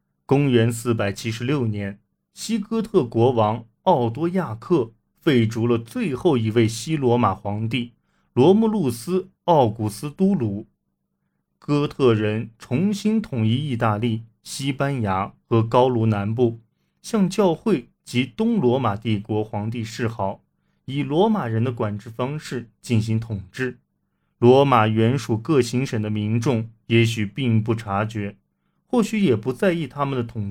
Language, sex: Chinese, male